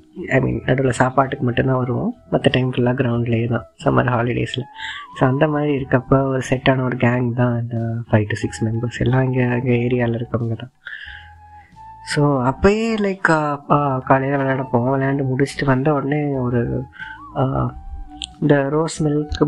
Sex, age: female, 20-39